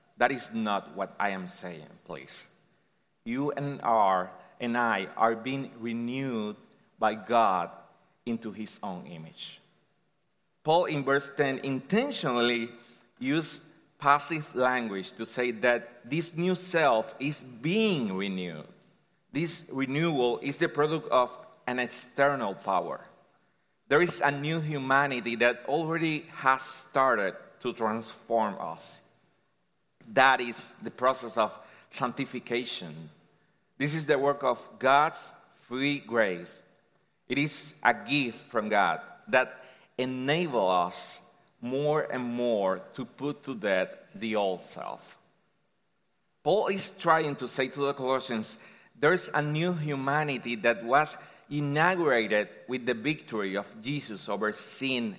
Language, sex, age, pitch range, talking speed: English, male, 30-49, 120-150 Hz, 125 wpm